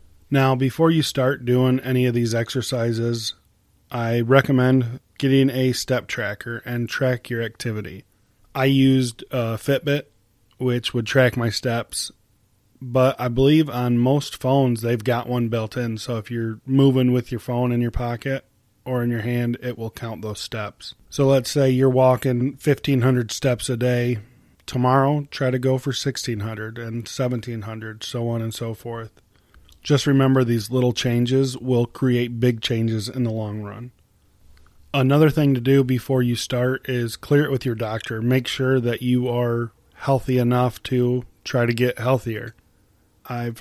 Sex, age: male, 20-39